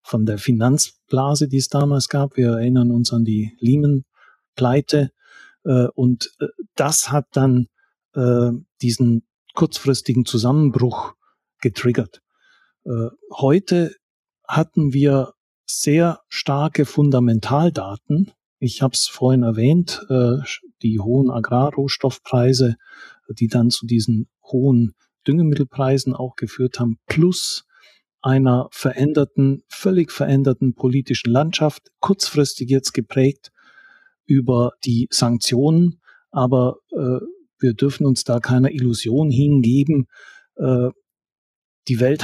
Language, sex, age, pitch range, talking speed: German, male, 40-59, 120-145 Hz, 100 wpm